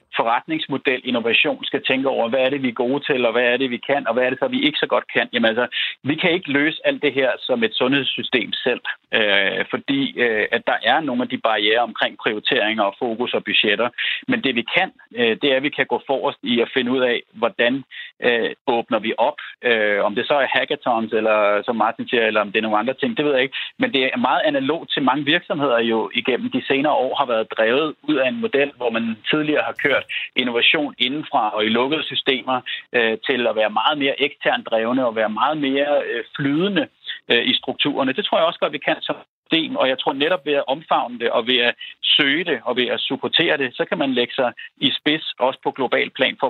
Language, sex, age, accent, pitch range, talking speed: Danish, male, 30-49, native, 120-170 Hz, 235 wpm